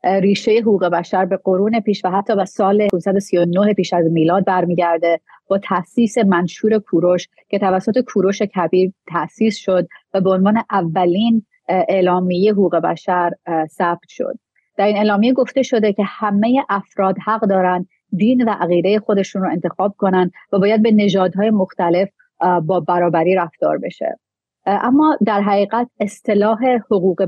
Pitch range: 180-210 Hz